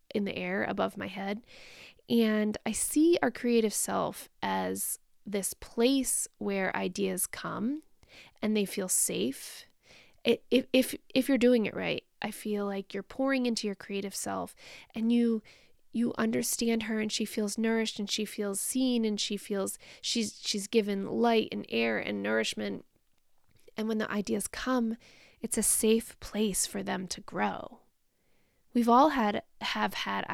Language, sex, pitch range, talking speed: English, female, 200-240 Hz, 160 wpm